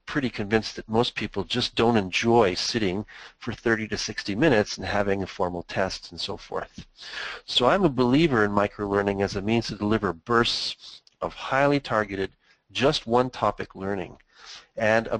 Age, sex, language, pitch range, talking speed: 40-59, male, English, 100-130 Hz, 165 wpm